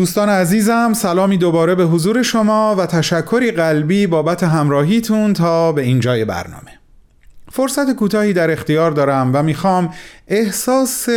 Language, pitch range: Persian, 135-195 Hz